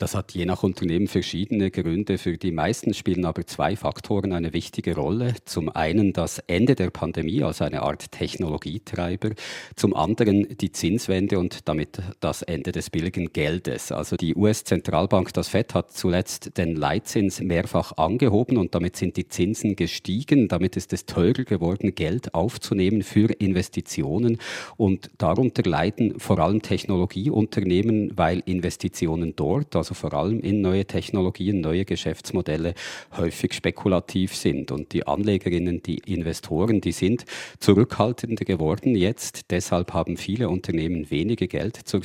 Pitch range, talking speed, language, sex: 85-105 Hz, 145 wpm, German, male